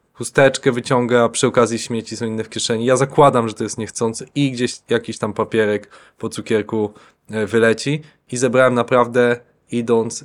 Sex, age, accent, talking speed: male, 20-39, native, 160 wpm